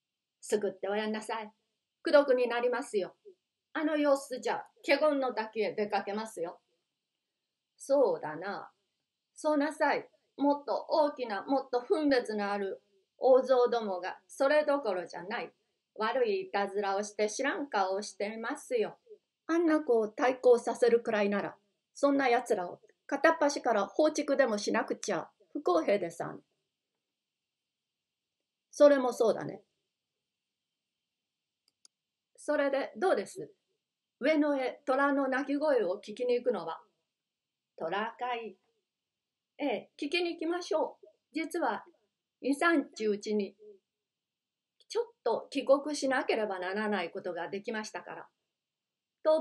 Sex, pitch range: female, 210-300 Hz